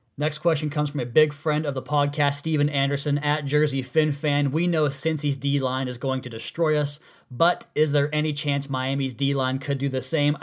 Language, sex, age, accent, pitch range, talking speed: English, male, 20-39, American, 130-150 Hz, 205 wpm